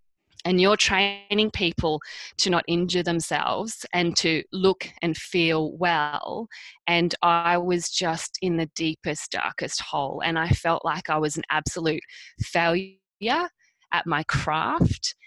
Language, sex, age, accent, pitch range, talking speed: English, female, 20-39, Australian, 170-220 Hz, 140 wpm